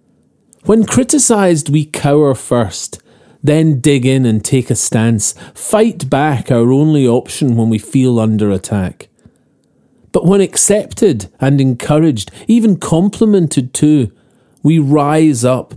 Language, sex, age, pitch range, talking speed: English, male, 40-59, 120-170 Hz, 125 wpm